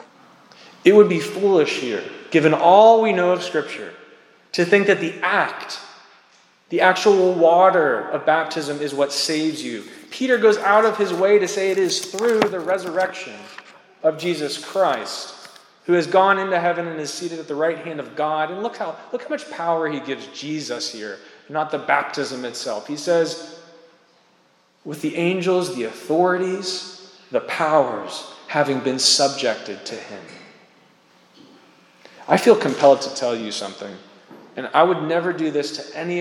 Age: 20-39